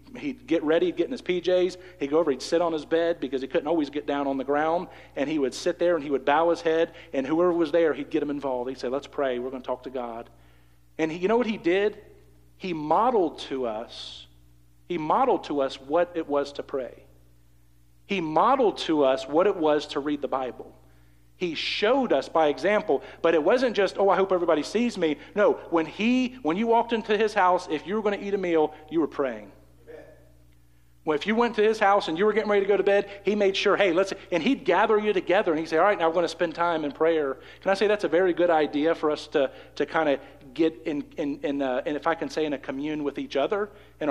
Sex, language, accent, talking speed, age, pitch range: male, English, American, 255 wpm, 40-59, 145-195 Hz